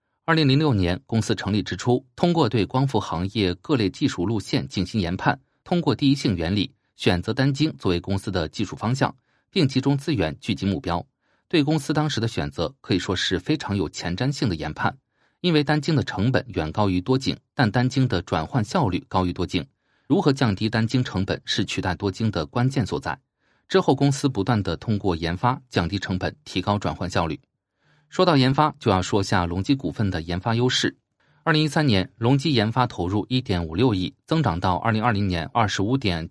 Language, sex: Chinese, male